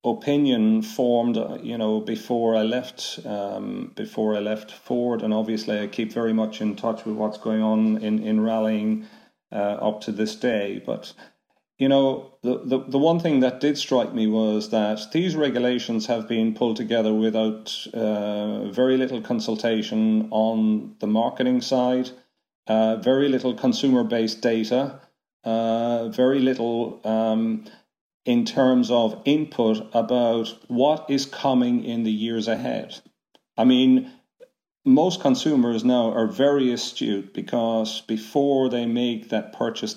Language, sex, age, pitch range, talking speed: English, male, 40-59, 110-130 Hz, 145 wpm